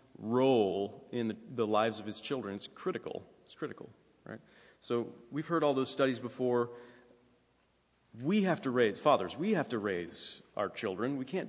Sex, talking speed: male, 170 wpm